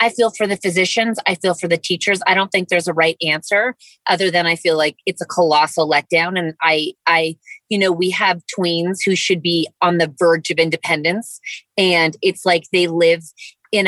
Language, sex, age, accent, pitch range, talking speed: English, female, 30-49, American, 170-205 Hz, 210 wpm